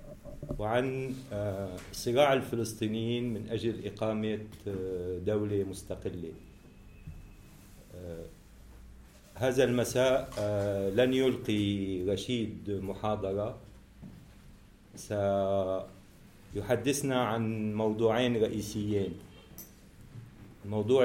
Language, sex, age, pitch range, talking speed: English, male, 50-69, 100-120 Hz, 55 wpm